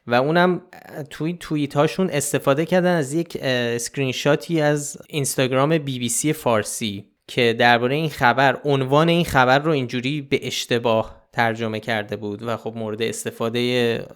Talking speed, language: 145 wpm, Persian